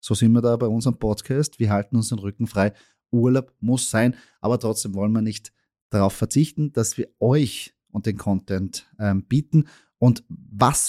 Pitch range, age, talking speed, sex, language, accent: 110-145 Hz, 30-49, 180 wpm, male, German, German